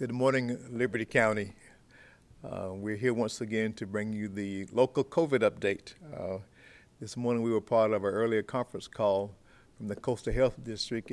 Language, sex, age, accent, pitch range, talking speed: English, male, 50-69, American, 105-120 Hz, 175 wpm